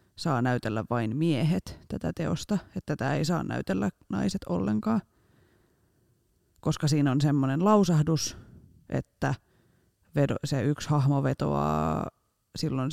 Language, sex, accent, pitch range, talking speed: Finnish, female, native, 115-165 Hz, 115 wpm